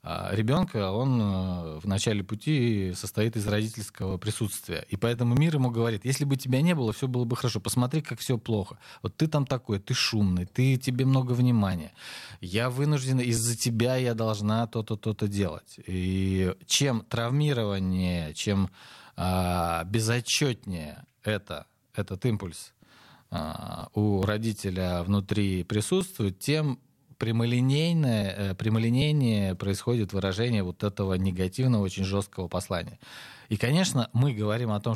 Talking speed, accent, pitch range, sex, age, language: 135 wpm, native, 100-125 Hz, male, 20-39, Russian